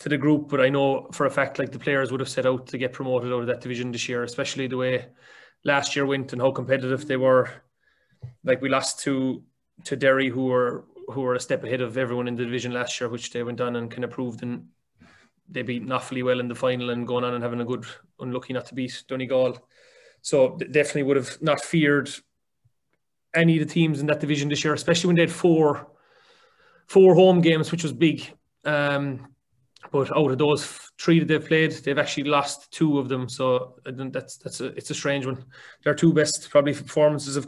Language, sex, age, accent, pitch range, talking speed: English, male, 20-39, Irish, 130-160 Hz, 225 wpm